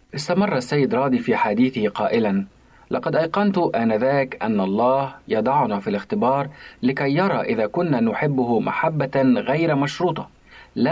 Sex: male